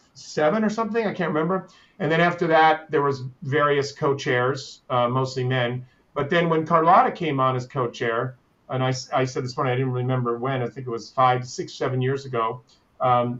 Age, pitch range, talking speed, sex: 40-59, 125-150 Hz, 200 wpm, male